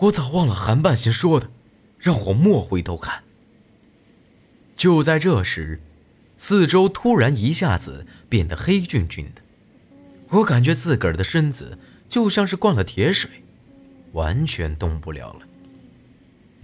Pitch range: 90-145 Hz